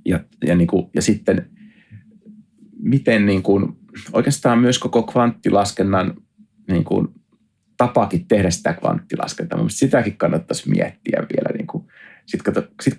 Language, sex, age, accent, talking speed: Finnish, male, 30-49, native, 110 wpm